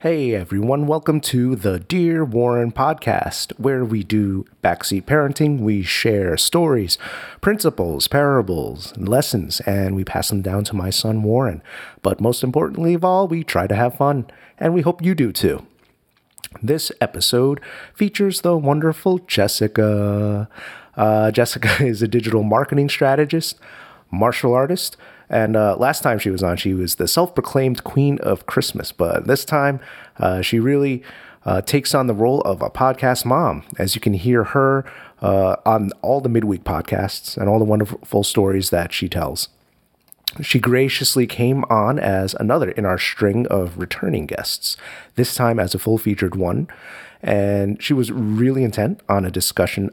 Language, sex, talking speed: English, male, 160 wpm